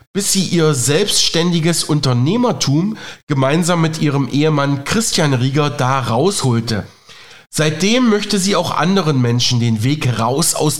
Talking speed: 130 wpm